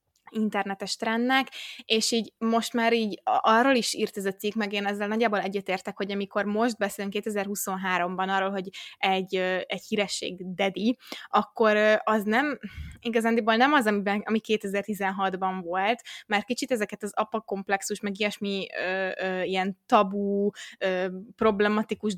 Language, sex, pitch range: Hungarian, female, 195-225 Hz